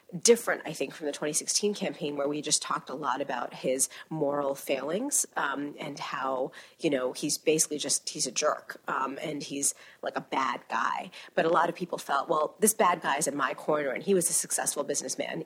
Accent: American